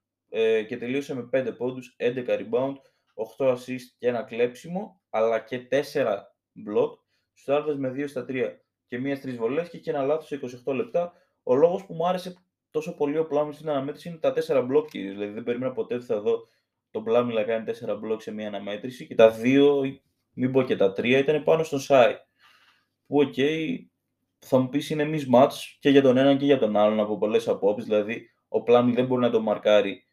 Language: Greek